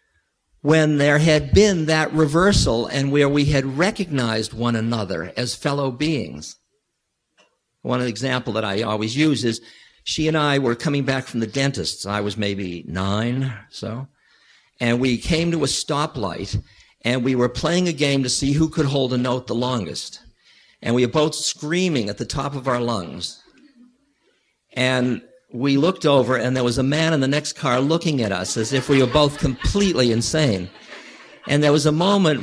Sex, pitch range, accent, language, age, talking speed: male, 115-155 Hz, American, English, 50-69, 180 wpm